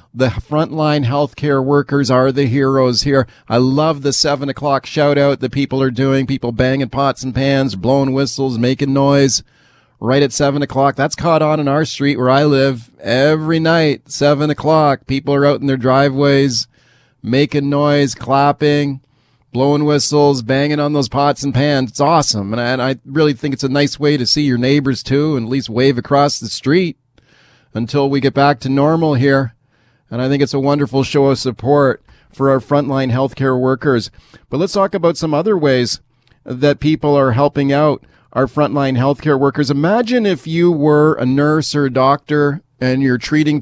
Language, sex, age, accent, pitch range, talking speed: English, male, 40-59, American, 130-145 Hz, 185 wpm